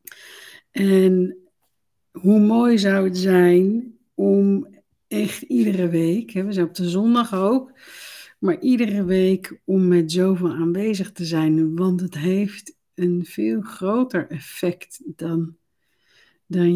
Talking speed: 125 wpm